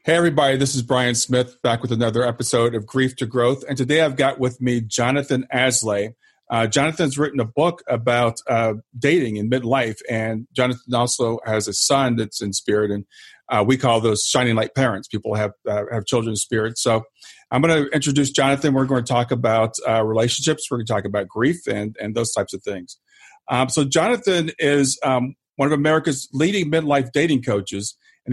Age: 40-59